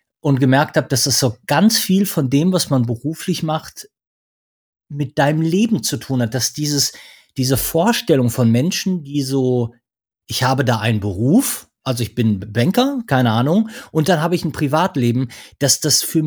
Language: German